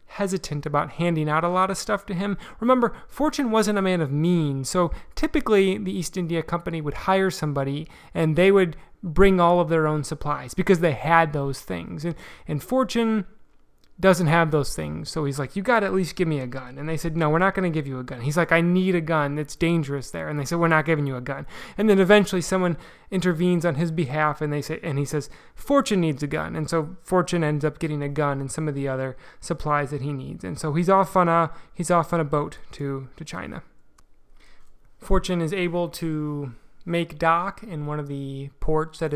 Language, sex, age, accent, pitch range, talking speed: English, male, 20-39, American, 150-185 Hz, 230 wpm